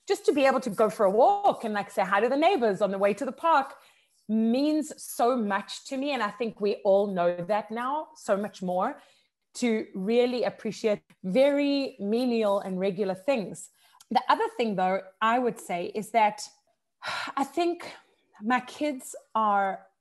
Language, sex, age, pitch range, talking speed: English, female, 20-39, 205-285 Hz, 175 wpm